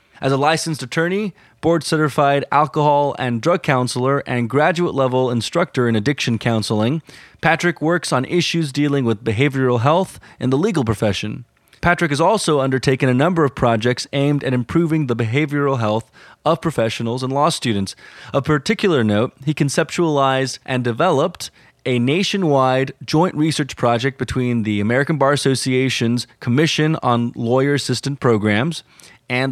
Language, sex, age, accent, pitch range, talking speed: English, male, 20-39, American, 120-155 Hz, 145 wpm